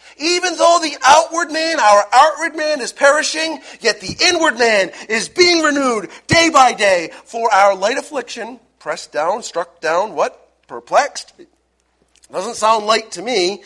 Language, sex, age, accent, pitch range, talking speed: English, male, 40-59, American, 195-290 Hz, 155 wpm